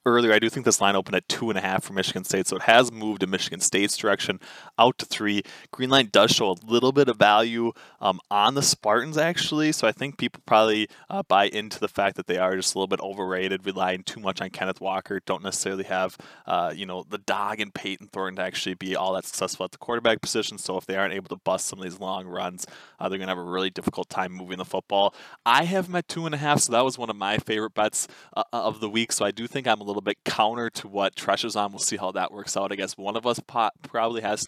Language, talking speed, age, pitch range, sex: English, 260 wpm, 20-39, 95-120 Hz, male